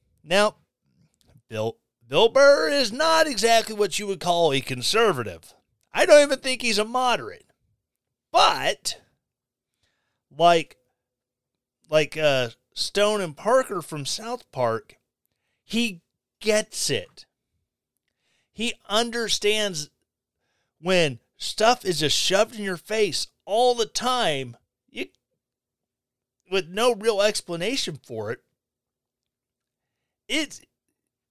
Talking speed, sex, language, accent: 100 wpm, male, English, American